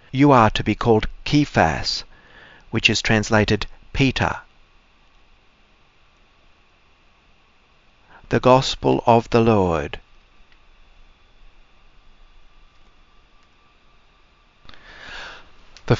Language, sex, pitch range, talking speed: English, male, 90-120 Hz, 60 wpm